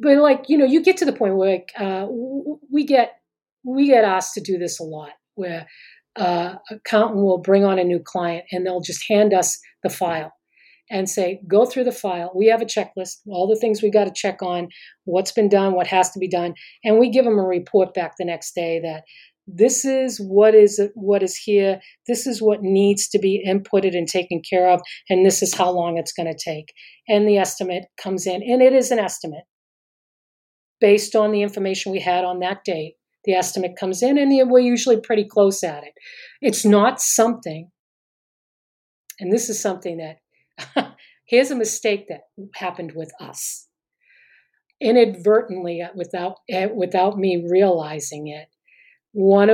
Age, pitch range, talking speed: 40-59, 180-220 Hz, 185 wpm